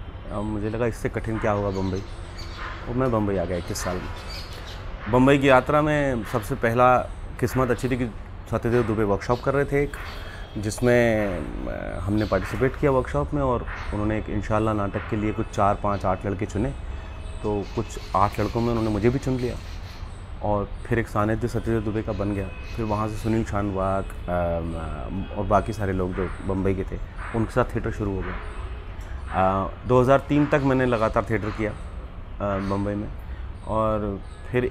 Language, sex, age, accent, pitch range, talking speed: Hindi, male, 30-49, native, 90-115 Hz, 175 wpm